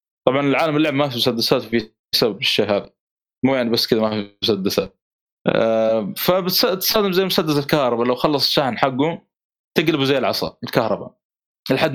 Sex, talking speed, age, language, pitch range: male, 150 wpm, 20-39, Arabic, 115-160 Hz